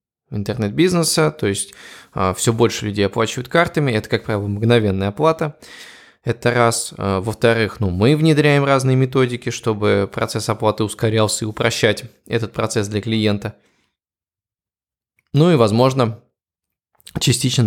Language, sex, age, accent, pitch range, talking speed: Russian, male, 20-39, native, 100-125 Hz, 115 wpm